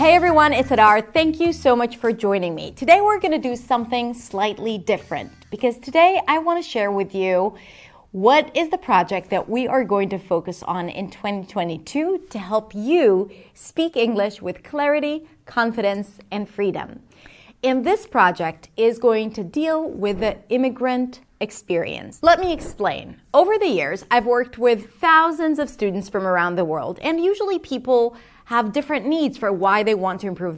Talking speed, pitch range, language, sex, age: 175 wpm, 195-280 Hz, English, female, 30-49